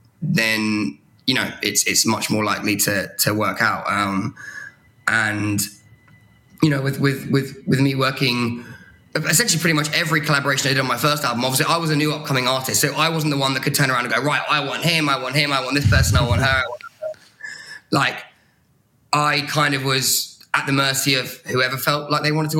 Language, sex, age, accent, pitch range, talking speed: English, male, 10-29, British, 120-145 Hz, 215 wpm